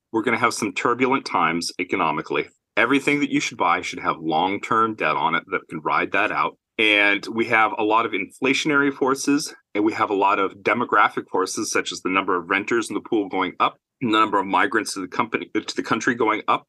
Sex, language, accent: male, English, American